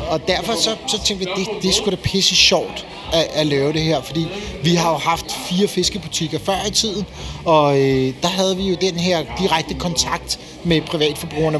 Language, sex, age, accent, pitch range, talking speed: Danish, male, 30-49, native, 145-185 Hz, 210 wpm